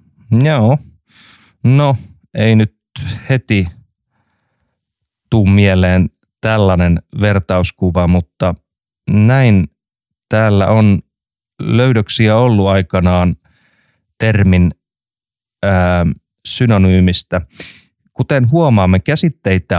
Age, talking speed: 30-49, 65 wpm